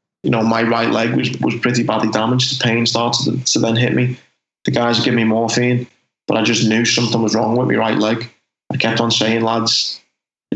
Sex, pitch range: male, 115-125 Hz